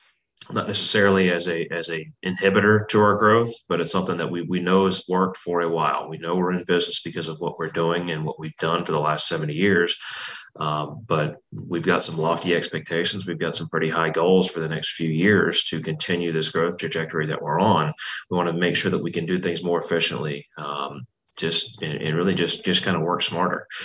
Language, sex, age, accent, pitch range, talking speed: English, male, 30-49, American, 80-90 Hz, 225 wpm